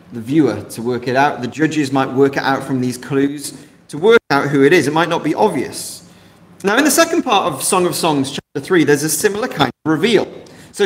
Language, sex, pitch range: English, male, 140-190 Hz